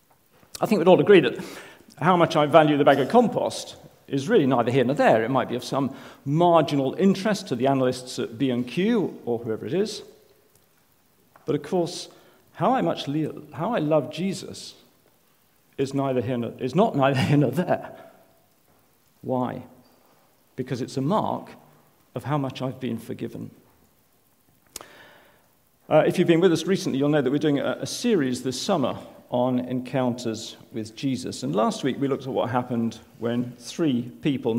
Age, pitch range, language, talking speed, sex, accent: 50-69, 120-155 Hz, English, 175 wpm, male, British